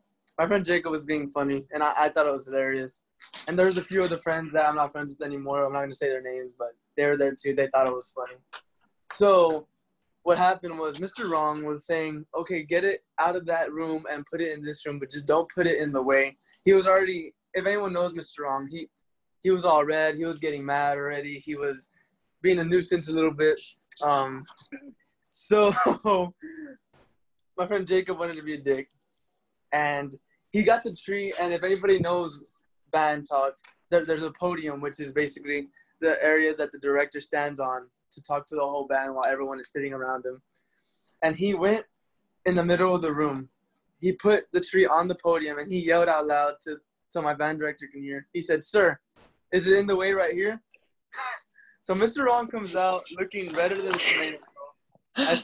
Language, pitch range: English, 145-185 Hz